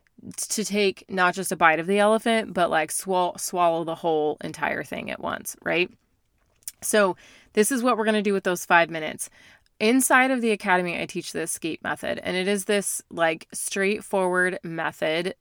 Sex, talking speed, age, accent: female, 185 wpm, 20-39, American